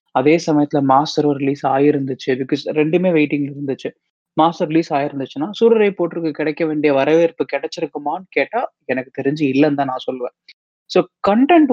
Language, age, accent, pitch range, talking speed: Tamil, 30-49, native, 155-210 Hz, 135 wpm